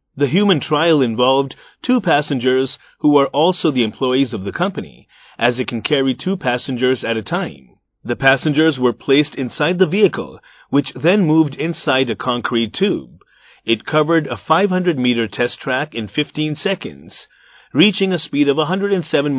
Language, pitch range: Japanese, 130-160 Hz